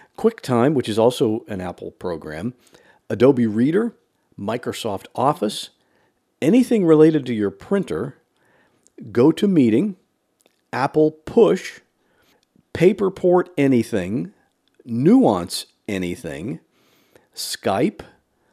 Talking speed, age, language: 80 wpm, 50-69, English